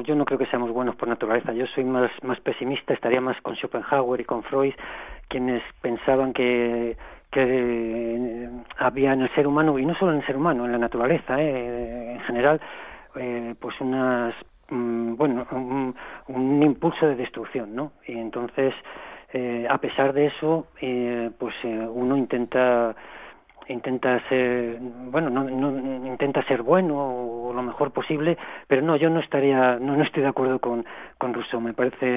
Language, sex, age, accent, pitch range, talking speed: Spanish, male, 40-59, Spanish, 120-140 Hz, 175 wpm